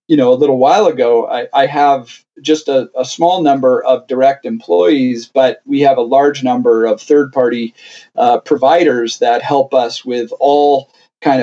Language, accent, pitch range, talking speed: English, American, 125-160 Hz, 180 wpm